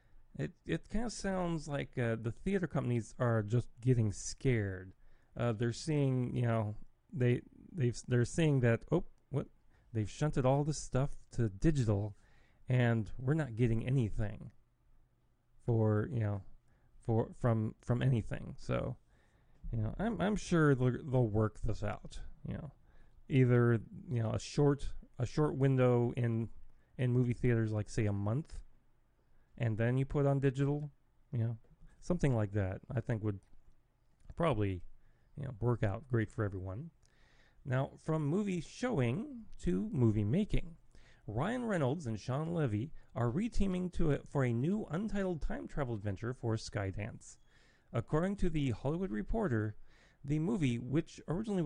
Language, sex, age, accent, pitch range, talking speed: English, male, 30-49, American, 115-155 Hz, 150 wpm